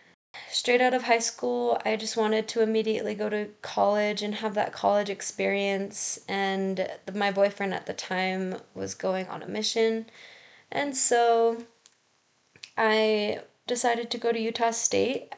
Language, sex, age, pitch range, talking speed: English, female, 20-39, 195-225 Hz, 150 wpm